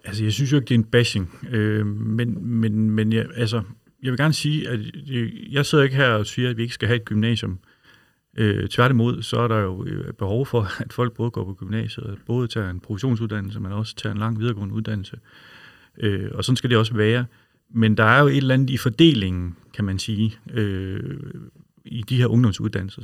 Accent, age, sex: native, 40-59, male